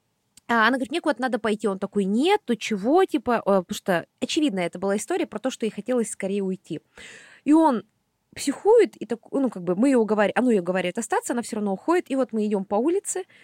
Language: Russian